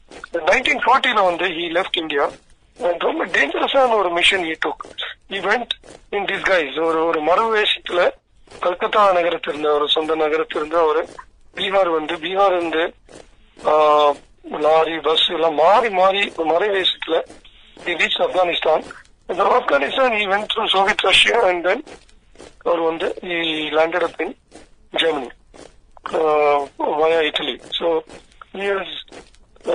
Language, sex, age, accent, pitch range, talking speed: Tamil, male, 40-59, native, 160-200 Hz, 105 wpm